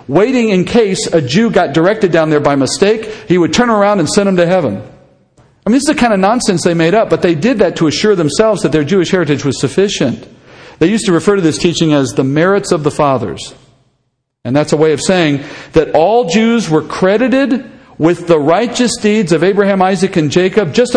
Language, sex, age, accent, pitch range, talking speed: English, male, 50-69, American, 145-200 Hz, 225 wpm